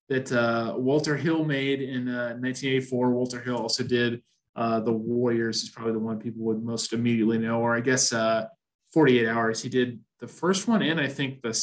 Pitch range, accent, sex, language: 115-135 Hz, American, male, English